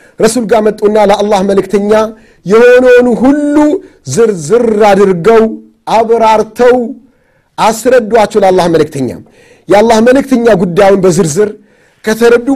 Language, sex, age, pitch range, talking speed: Amharic, male, 50-69, 200-250 Hz, 115 wpm